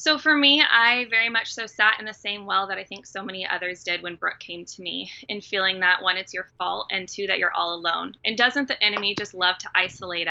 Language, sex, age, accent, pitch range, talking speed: English, female, 20-39, American, 180-215 Hz, 260 wpm